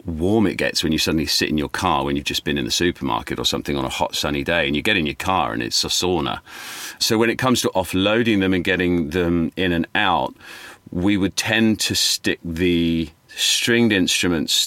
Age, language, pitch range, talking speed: 40-59, English, 85-100 Hz, 225 wpm